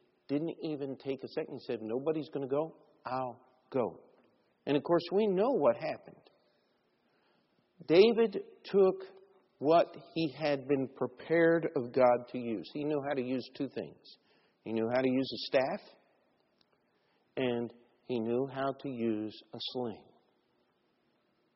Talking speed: 150 wpm